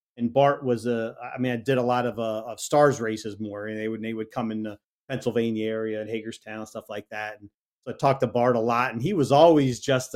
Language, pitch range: English, 115-130 Hz